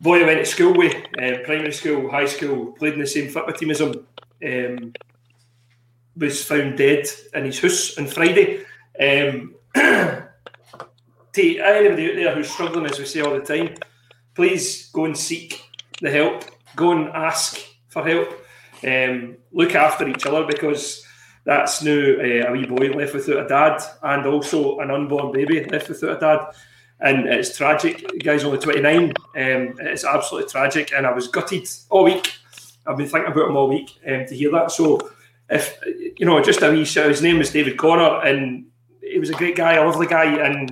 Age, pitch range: 30-49, 135-165 Hz